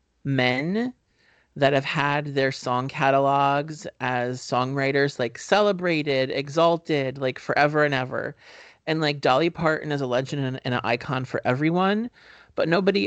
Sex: male